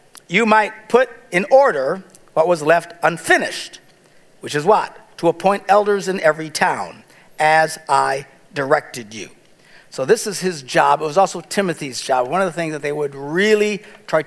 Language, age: English, 50-69